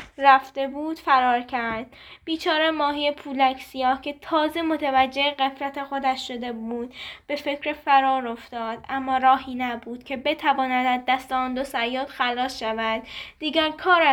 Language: Persian